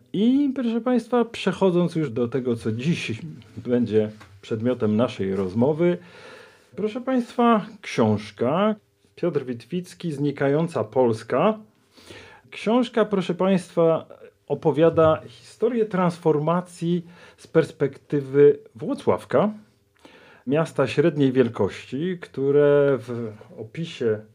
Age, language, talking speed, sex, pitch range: 40-59, Polish, 85 wpm, male, 115-175 Hz